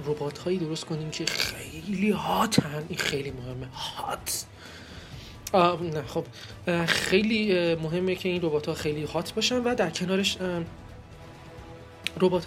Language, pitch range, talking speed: Persian, 155-205 Hz, 125 wpm